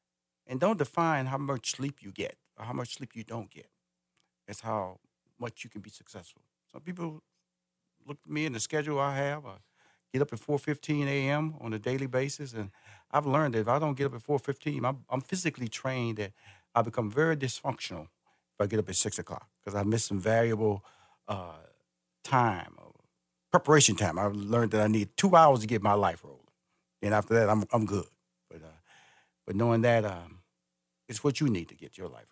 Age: 50-69